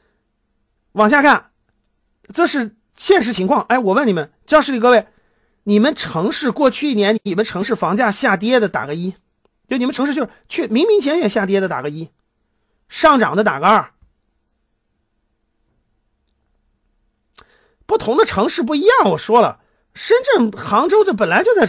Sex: male